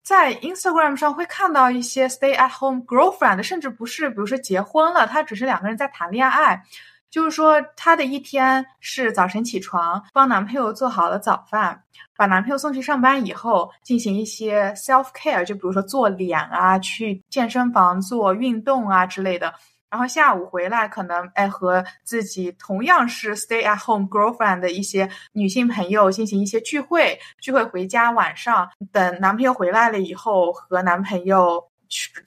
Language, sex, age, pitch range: Chinese, female, 20-39, 195-295 Hz